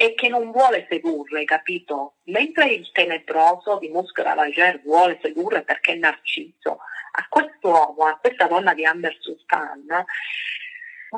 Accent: native